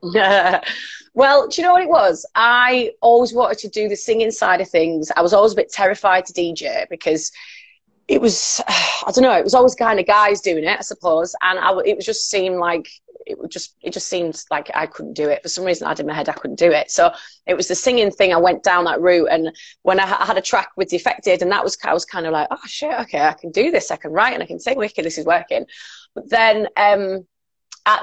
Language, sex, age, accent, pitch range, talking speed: English, female, 30-49, British, 165-220 Hz, 255 wpm